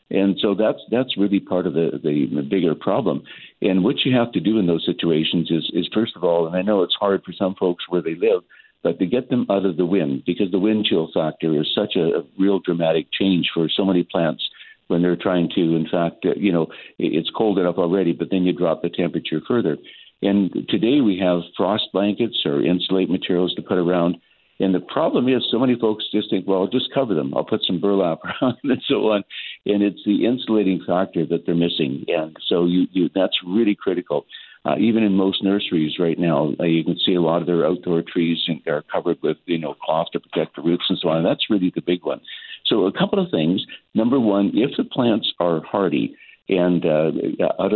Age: 60-79